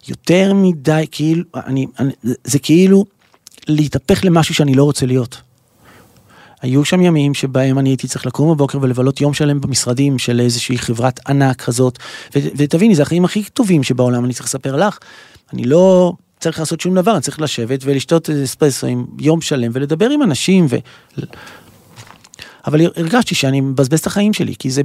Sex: male